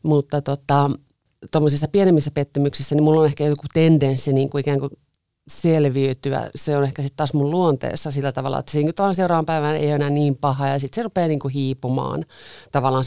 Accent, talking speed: native, 200 wpm